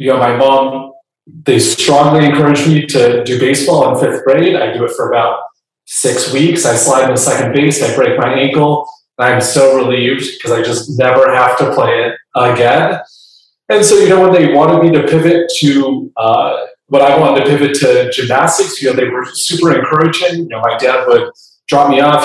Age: 30-49